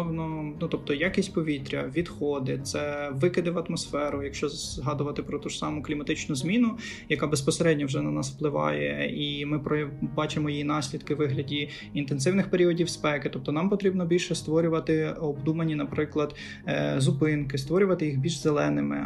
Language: Ukrainian